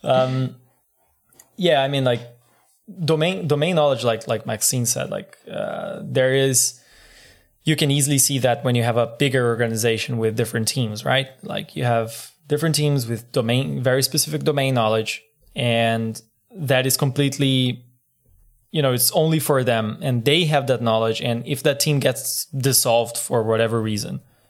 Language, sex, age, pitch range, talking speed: English, male, 20-39, 115-140 Hz, 160 wpm